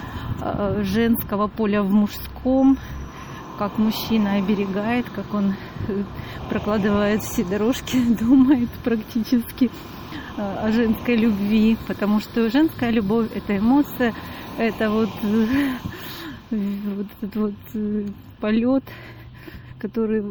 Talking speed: 90 wpm